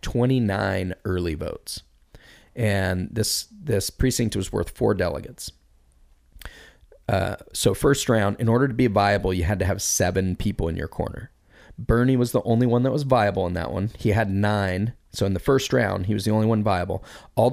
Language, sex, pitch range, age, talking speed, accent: English, male, 95-115 Hz, 30-49, 190 wpm, American